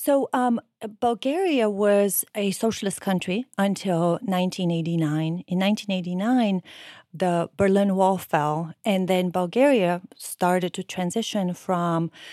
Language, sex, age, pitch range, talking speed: English, female, 30-49, 180-225 Hz, 105 wpm